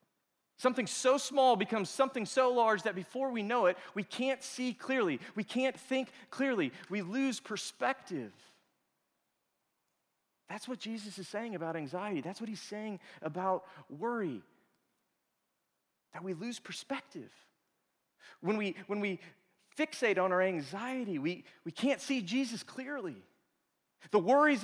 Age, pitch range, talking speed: 30-49, 180-260 Hz, 135 wpm